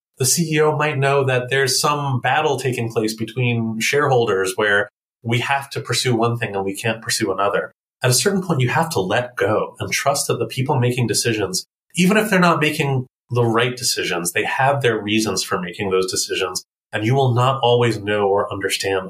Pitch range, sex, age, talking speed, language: 115-145 Hz, male, 30-49, 200 wpm, English